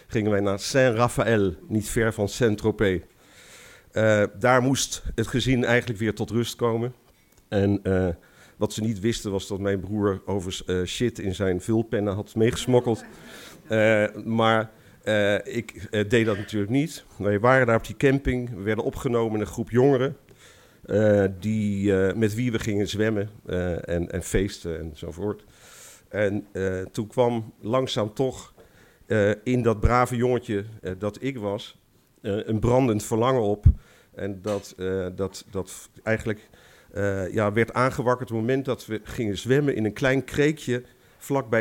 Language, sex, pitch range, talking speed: Dutch, male, 100-120 Hz, 155 wpm